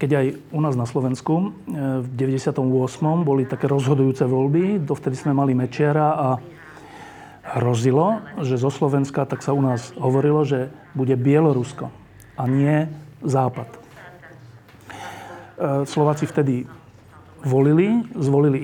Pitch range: 130-155 Hz